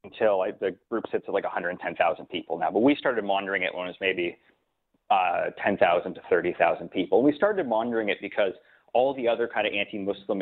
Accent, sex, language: American, male, English